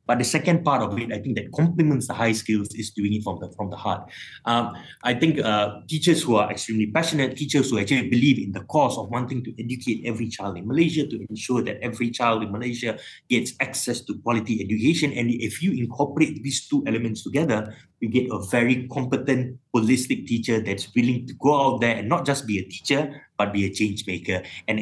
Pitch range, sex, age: 105-135 Hz, male, 20-39